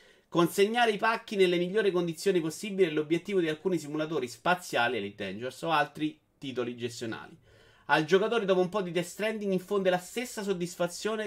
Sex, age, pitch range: male, 30-49, 130-190 Hz